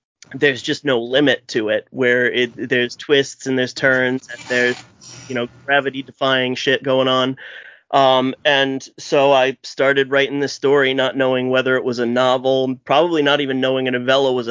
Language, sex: English, male